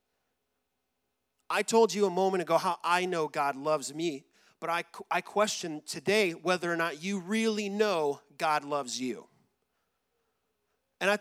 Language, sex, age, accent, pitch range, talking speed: English, male, 30-49, American, 155-205 Hz, 150 wpm